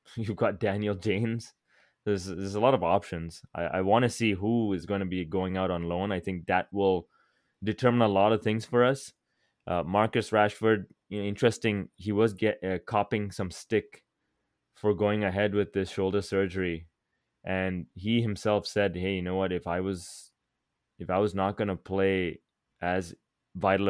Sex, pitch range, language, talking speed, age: male, 95-110 Hz, English, 185 wpm, 20-39